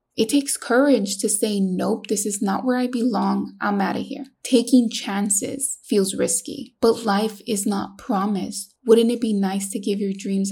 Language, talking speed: English, 190 wpm